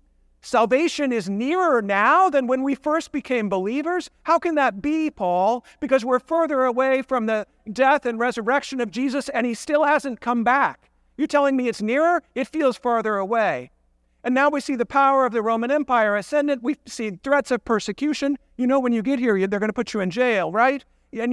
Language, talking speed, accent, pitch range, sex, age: English, 200 wpm, American, 195-265 Hz, male, 50-69